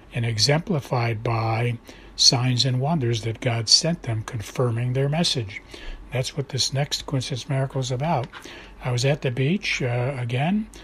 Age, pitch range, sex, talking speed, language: 60-79, 120-140 Hz, male, 155 wpm, English